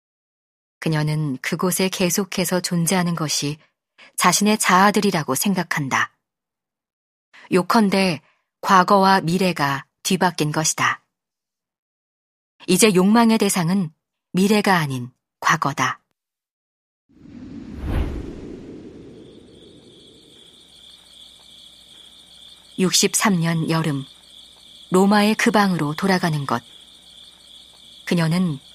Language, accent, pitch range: Korean, native, 155-200 Hz